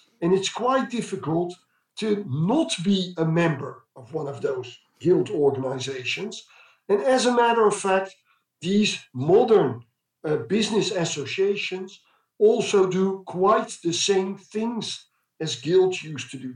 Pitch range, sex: 155-200 Hz, male